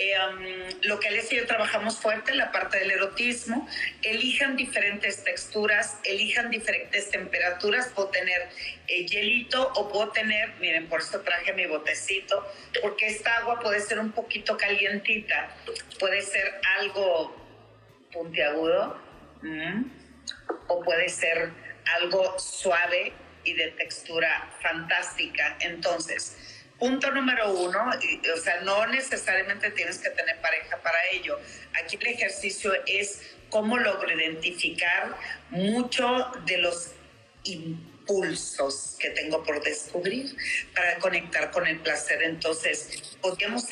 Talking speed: 130 wpm